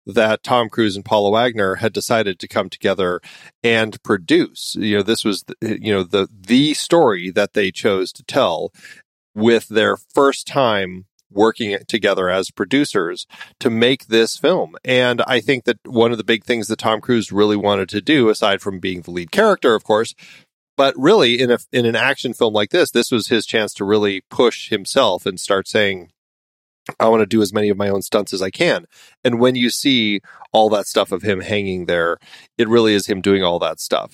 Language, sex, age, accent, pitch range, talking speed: English, male, 30-49, American, 95-120 Hz, 205 wpm